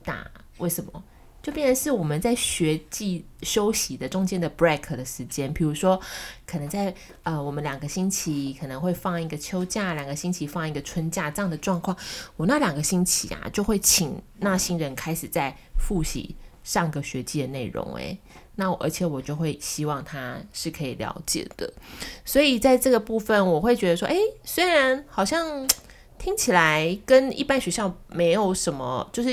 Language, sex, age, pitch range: Chinese, female, 20-39, 160-225 Hz